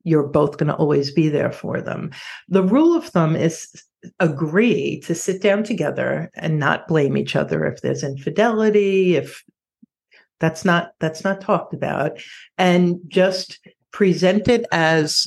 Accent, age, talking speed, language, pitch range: American, 60-79, 155 wpm, English, 155-205 Hz